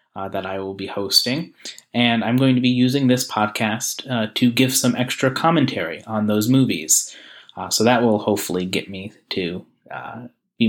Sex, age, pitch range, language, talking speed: male, 30-49, 105-130 Hz, English, 185 wpm